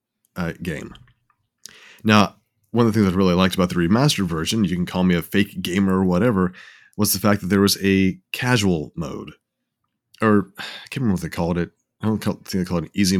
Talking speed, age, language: 220 wpm, 30-49, English